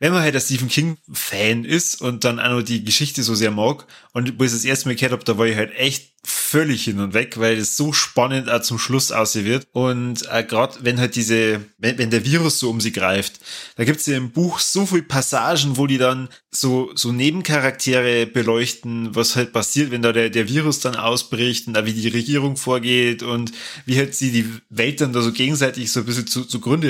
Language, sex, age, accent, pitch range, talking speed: German, male, 20-39, German, 115-150 Hz, 220 wpm